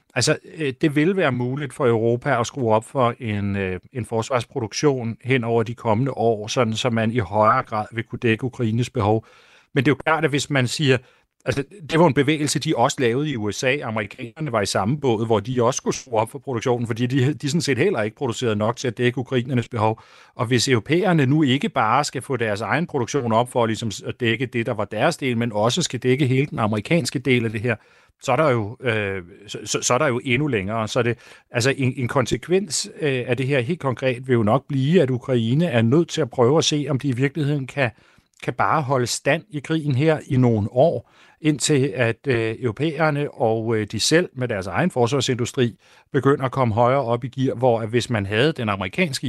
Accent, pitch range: native, 115-140 Hz